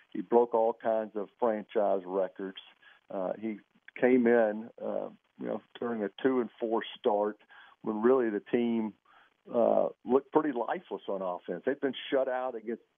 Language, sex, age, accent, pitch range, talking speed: English, male, 50-69, American, 105-115 Hz, 160 wpm